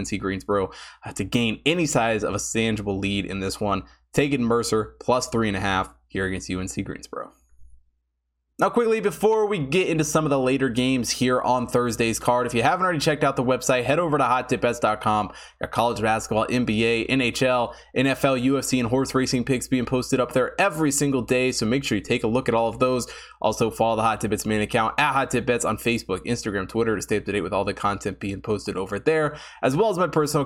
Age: 20-39